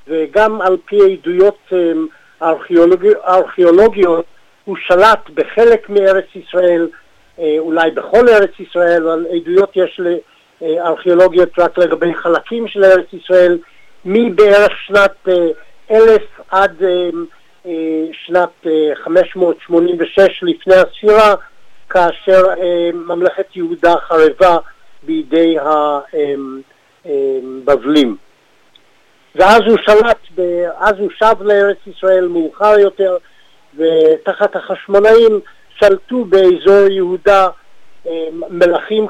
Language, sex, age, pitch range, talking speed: Hebrew, male, 60-79, 165-200 Hz, 85 wpm